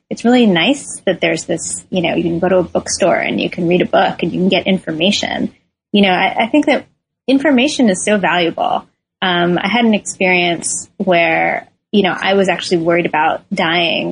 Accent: American